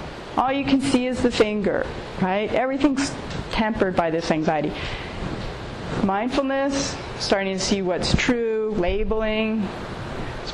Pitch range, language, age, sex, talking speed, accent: 185-245 Hz, English, 40-59, female, 120 wpm, American